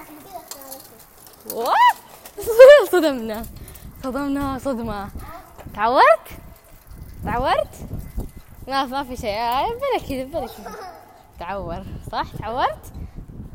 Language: Arabic